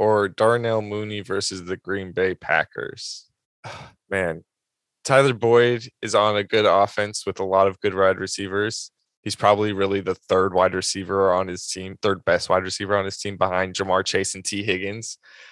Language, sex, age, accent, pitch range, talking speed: English, male, 20-39, American, 100-125 Hz, 180 wpm